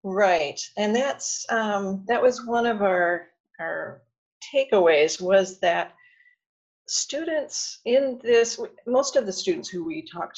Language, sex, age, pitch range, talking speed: English, female, 40-59, 175-275 Hz, 135 wpm